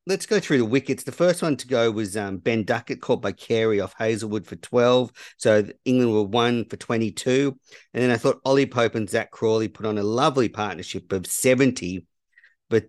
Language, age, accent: English, 50-69, Australian